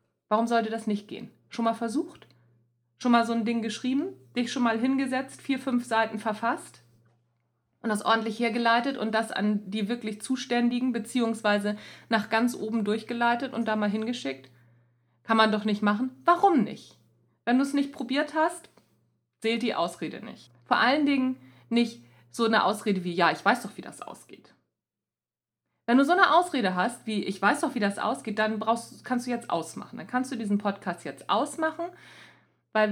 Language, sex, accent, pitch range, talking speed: German, female, German, 185-245 Hz, 180 wpm